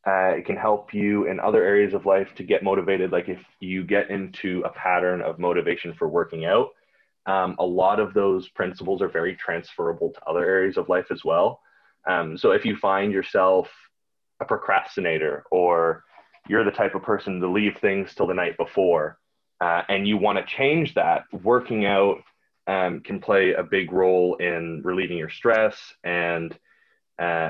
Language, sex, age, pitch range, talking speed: English, male, 20-39, 90-110 Hz, 180 wpm